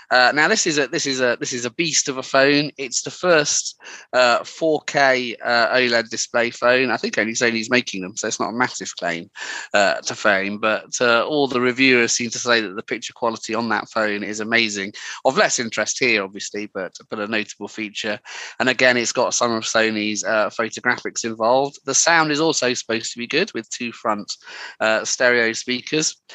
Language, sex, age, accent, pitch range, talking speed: English, male, 30-49, British, 115-145 Hz, 205 wpm